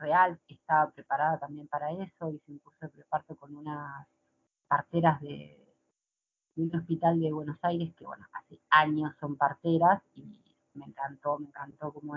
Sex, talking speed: female, 165 wpm